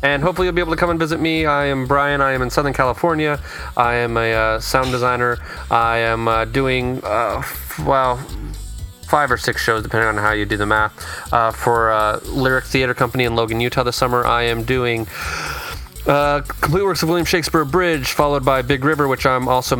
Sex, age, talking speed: male, 30-49, 210 wpm